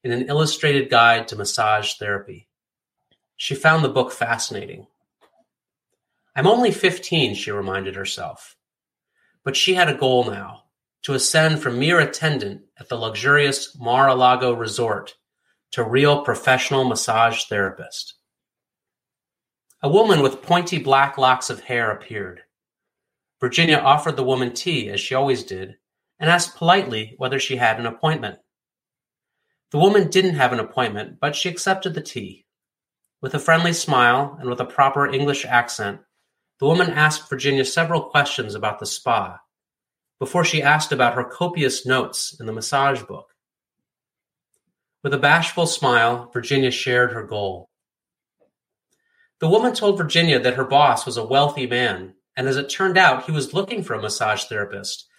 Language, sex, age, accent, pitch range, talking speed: English, male, 30-49, American, 125-165 Hz, 150 wpm